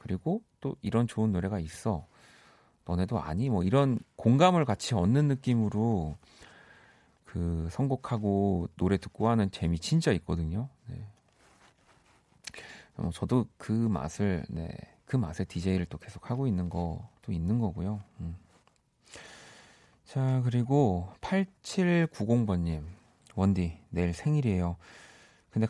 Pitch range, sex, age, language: 95-130 Hz, male, 40-59, Korean